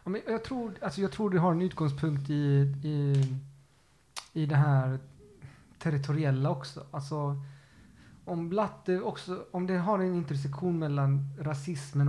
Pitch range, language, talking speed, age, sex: 135-150 Hz, Swedish, 135 wpm, 30-49, male